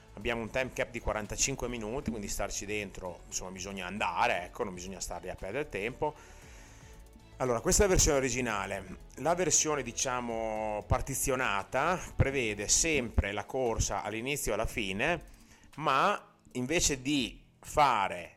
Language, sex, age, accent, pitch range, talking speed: Italian, male, 30-49, native, 100-135 Hz, 135 wpm